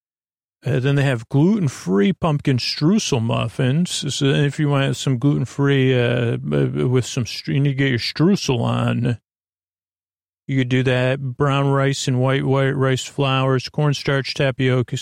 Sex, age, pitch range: male, 40-59, 120-140 Hz